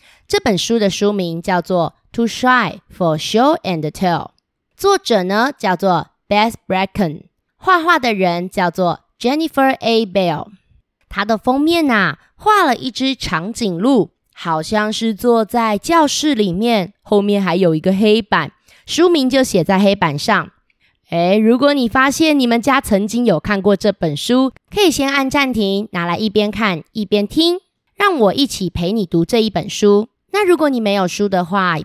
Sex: female